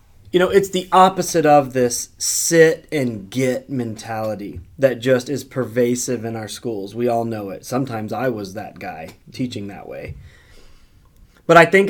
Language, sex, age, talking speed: English, male, 30-49, 155 wpm